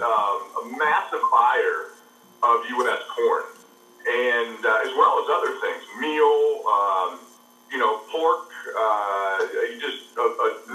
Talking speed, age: 130 wpm, 40-59